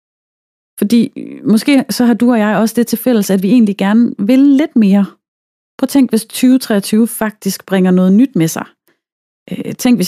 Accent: native